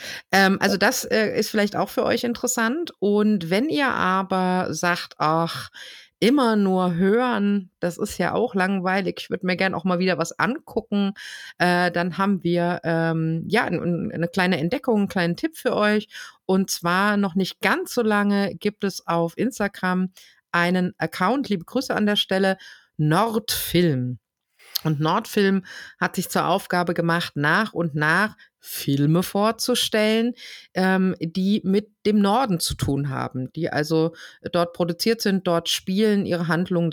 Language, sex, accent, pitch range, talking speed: German, female, German, 165-210 Hz, 155 wpm